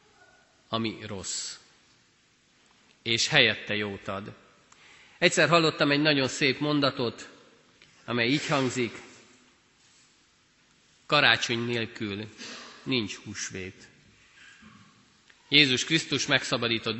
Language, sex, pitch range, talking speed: Hungarian, male, 110-150 Hz, 80 wpm